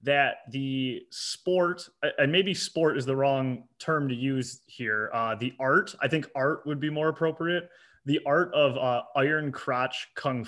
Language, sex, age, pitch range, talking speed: English, male, 20-39, 125-155 Hz, 170 wpm